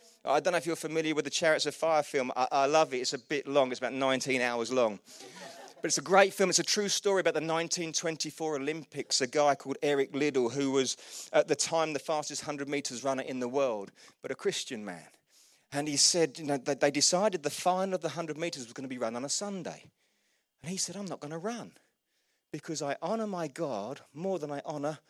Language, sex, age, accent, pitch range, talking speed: English, male, 30-49, British, 145-215 Hz, 235 wpm